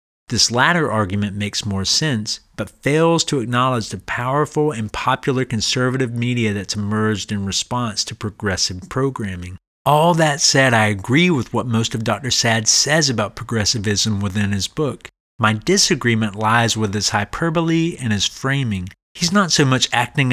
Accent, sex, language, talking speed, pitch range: American, male, English, 160 wpm, 105-135 Hz